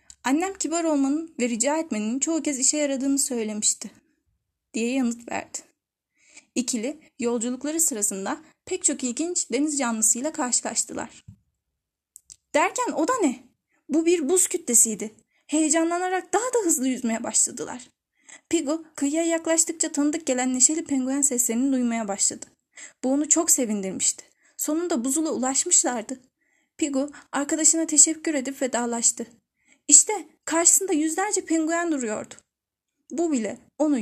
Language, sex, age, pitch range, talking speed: Turkish, female, 10-29, 240-315 Hz, 120 wpm